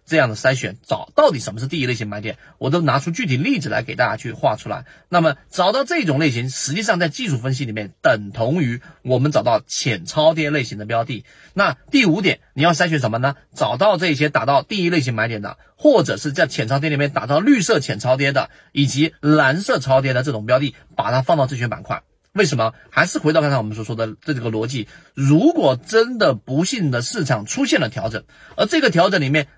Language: Chinese